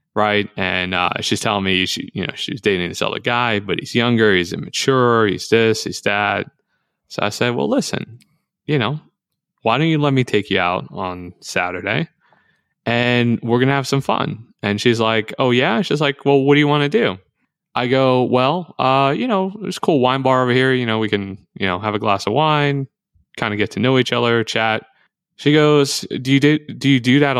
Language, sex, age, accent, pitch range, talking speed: English, male, 20-39, American, 105-140 Hz, 225 wpm